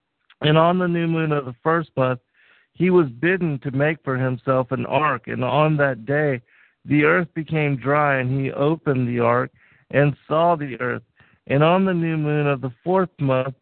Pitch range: 130-150 Hz